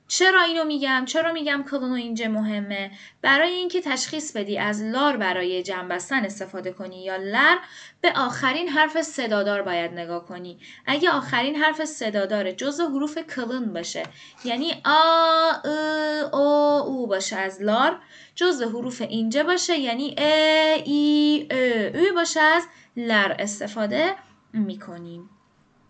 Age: 10-29